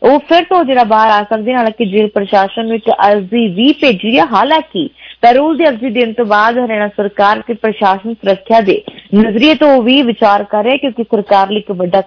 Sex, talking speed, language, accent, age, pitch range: female, 170 wpm, English, Indian, 20-39, 210-270 Hz